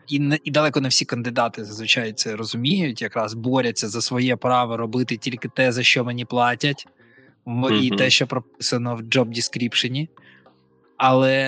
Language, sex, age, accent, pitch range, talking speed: Ukrainian, male, 20-39, native, 115-145 Hz, 145 wpm